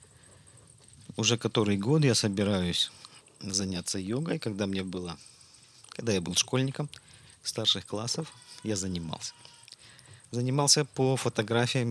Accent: native